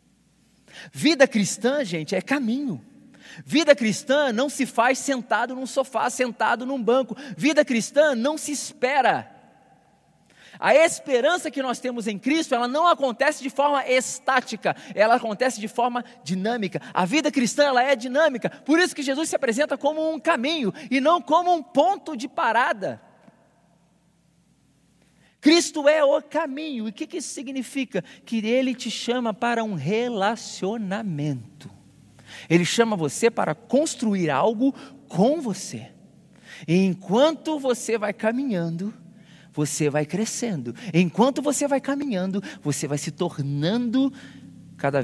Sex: male